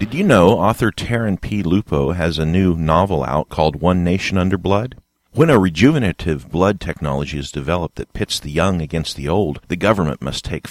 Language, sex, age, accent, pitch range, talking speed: English, male, 50-69, American, 80-130 Hz, 195 wpm